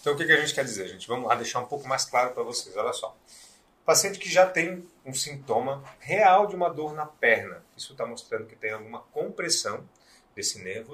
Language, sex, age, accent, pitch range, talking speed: Portuguese, male, 30-49, Brazilian, 125-205 Hz, 225 wpm